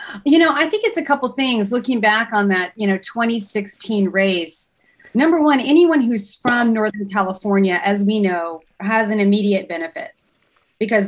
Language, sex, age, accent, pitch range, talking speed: English, female, 30-49, American, 190-230 Hz, 170 wpm